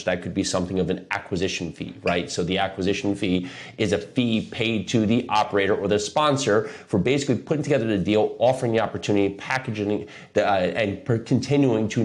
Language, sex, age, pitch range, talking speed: English, male, 30-49, 95-120 Hz, 185 wpm